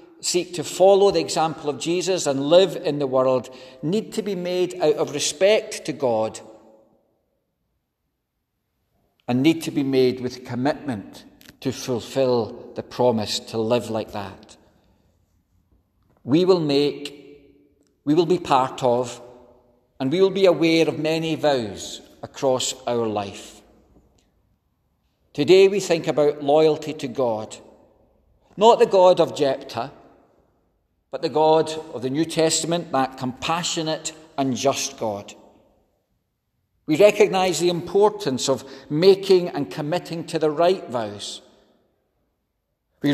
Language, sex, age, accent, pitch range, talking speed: English, male, 50-69, British, 120-165 Hz, 125 wpm